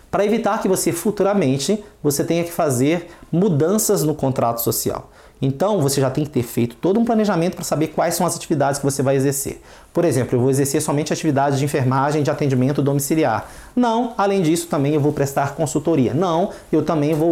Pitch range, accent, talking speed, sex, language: 135-180 Hz, Brazilian, 195 wpm, male, Portuguese